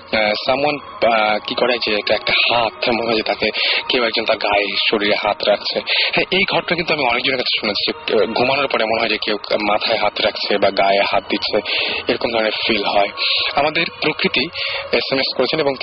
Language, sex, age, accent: Bengali, male, 30-49, native